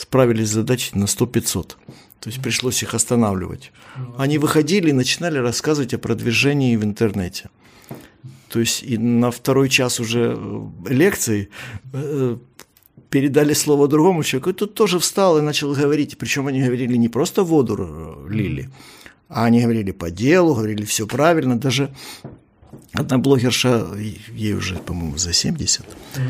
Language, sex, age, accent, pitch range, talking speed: Russian, male, 50-69, native, 115-145 Hz, 140 wpm